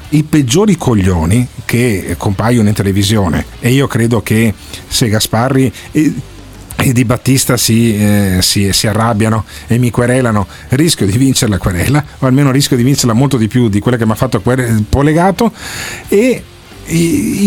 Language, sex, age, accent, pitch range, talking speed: Italian, male, 40-59, native, 105-140 Hz, 160 wpm